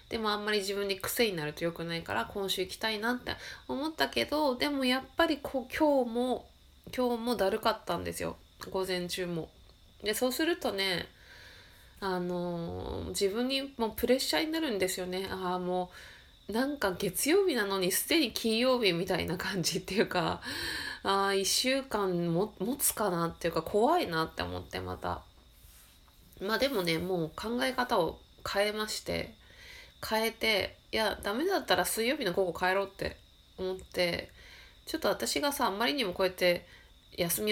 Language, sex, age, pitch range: Japanese, female, 20-39, 175-225 Hz